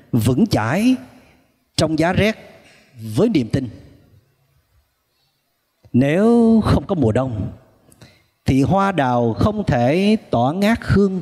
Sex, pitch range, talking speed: male, 115-165 Hz, 110 wpm